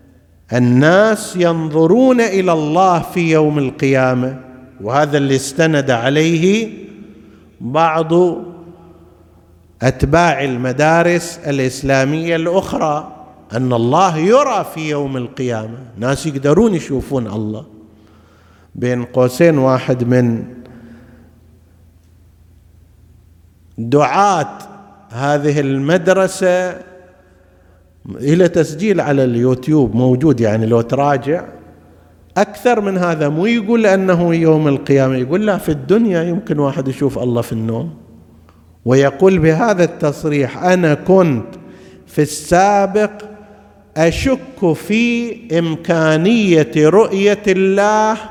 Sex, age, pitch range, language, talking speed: male, 50-69, 120-175 Hz, Arabic, 90 wpm